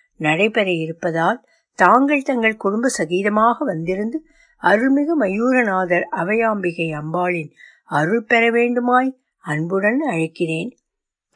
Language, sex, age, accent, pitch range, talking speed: Tamil, female, 60-79, native, 180-260 Hz, 85 wpm